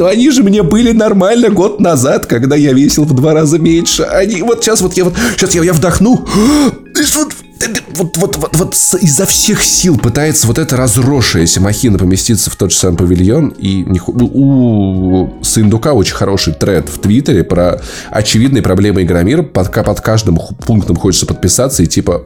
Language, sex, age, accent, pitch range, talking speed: Russian, male, 20-39, native, 90-145 Hz, 175 wpm